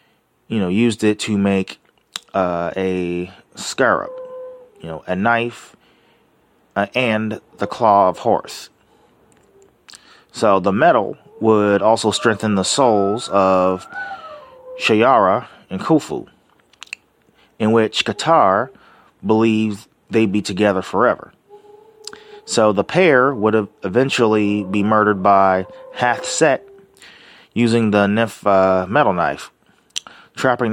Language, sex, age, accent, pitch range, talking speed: English, male, 30-49, American, 100-125 Hz, 110 wpm